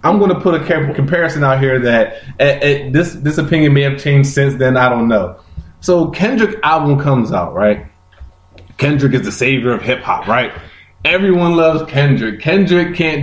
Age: 20-39